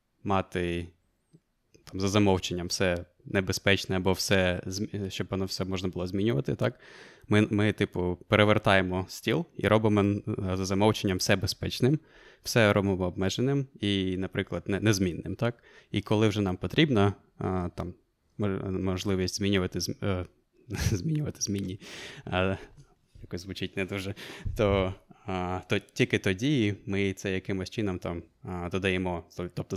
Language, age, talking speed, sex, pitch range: Ukrainian, 20-39, 125 wpm, male, 95-105 Hz